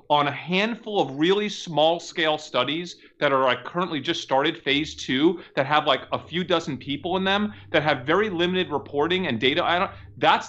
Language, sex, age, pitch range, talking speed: English, male, 30-49, 135-195 Hz, 190 wpm